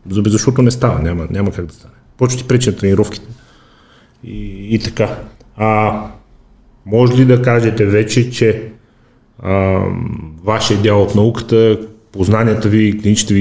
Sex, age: male, 30-49